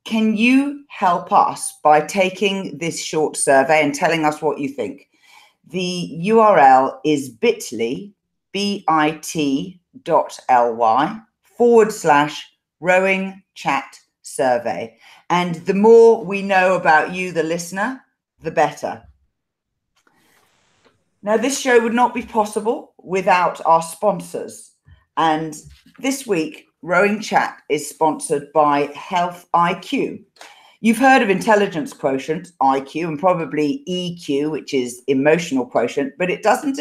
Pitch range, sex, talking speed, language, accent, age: 145-205 Hz, female, 120 wpm, English, British, 40-59